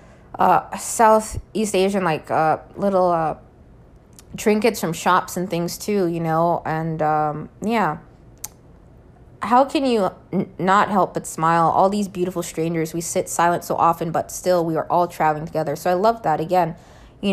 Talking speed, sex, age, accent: 165 wpm, female, 20-39, American